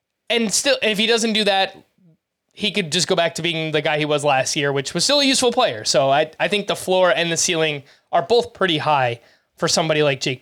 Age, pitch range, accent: 20-39, 170-215 Hz, American